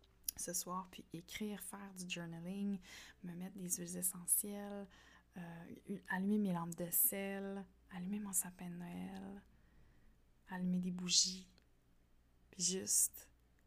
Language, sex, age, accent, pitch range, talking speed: French, female, 20-39, Canadian, 165-195 Hz, 125 wpm